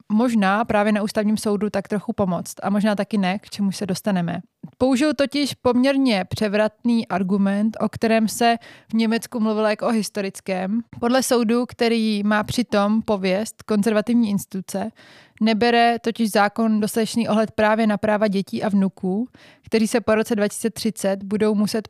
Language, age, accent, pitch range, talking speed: Czech, 20-39, native, 200-230 Hz, 155 wpm